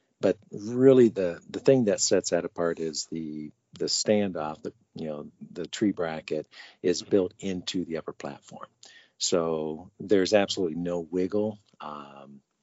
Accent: American